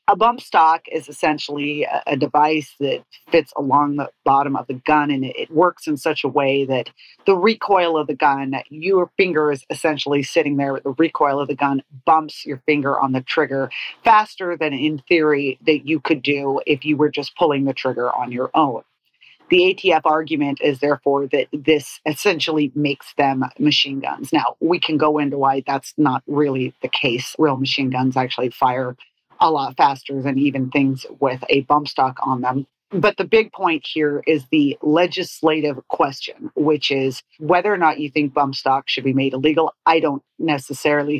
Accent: American